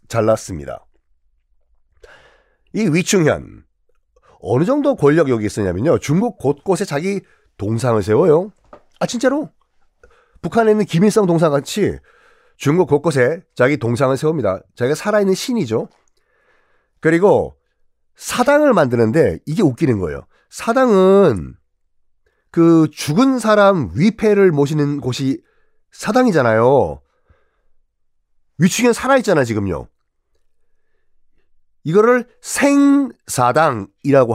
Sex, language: male, Korean